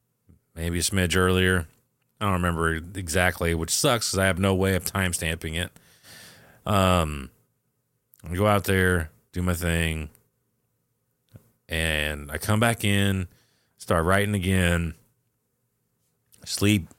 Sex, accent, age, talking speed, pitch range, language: male, American, 30-49, 125 wpm, 90-115 Hz, English